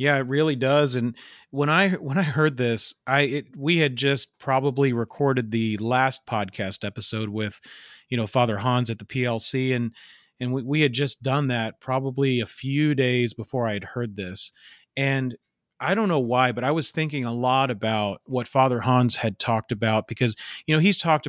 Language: English